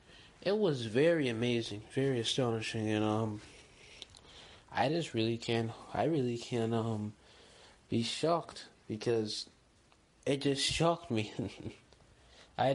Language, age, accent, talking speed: English, 20-39, American, 115 wpm